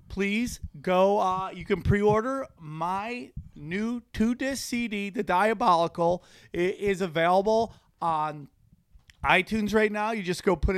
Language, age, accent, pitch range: English, 30-49, American, 160-195 Hz